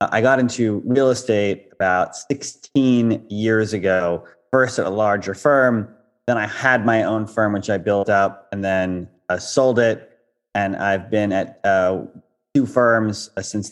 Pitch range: 105-125 Hz